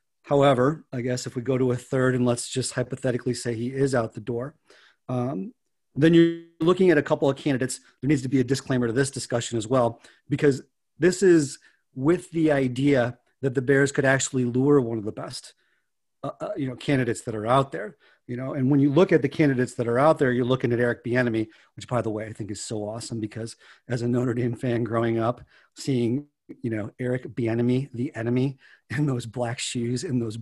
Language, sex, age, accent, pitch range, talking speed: English, male, 40-59, American, 120-140 Hz, 220 wpm